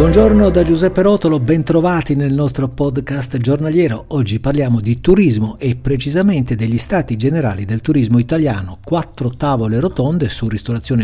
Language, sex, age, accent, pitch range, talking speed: Italian, male, 50-69, native, 115-160 Hz, 140 wpm